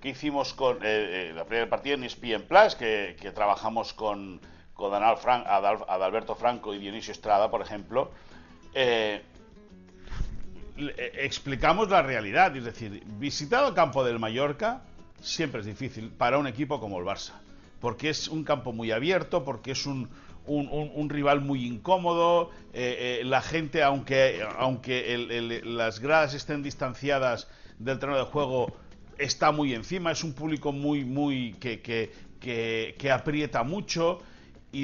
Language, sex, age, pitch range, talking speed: Spanish, male, 60-79, 115-155 Hz, 160 wpm